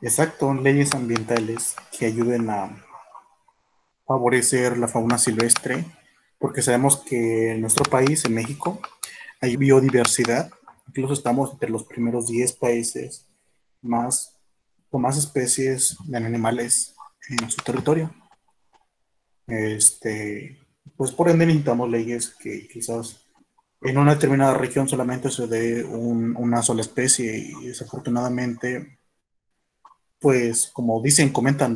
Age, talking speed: 30-49, 115 wpm